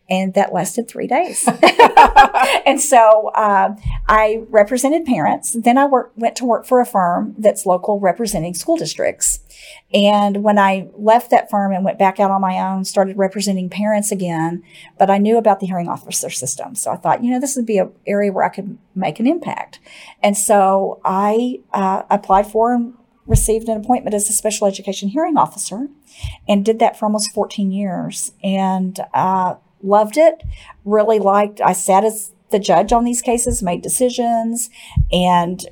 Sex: female